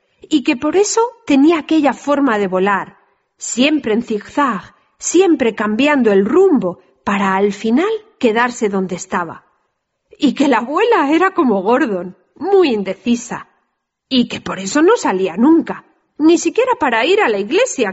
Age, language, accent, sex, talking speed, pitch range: 40-59, Spanish, Spanish, female, 150 wpm, 210-320 Hz